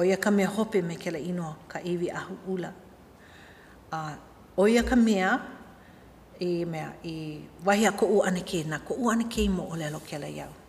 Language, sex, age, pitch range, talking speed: English, female, 50-69, 160-215 Hz, 140 wpm